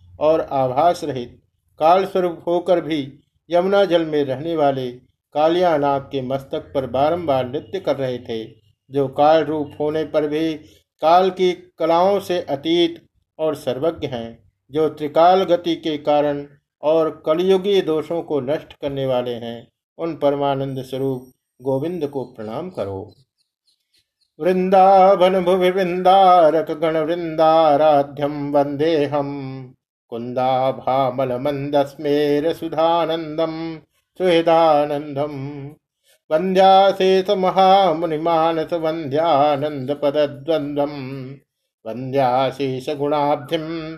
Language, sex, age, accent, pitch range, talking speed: Hindi, male, 50-69, native, 140-170 Hz, 95 wpm